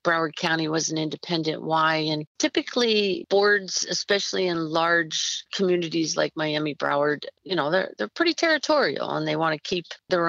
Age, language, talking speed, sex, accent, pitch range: 50-69, English, 165 wpm, female, American, 160-185 Hz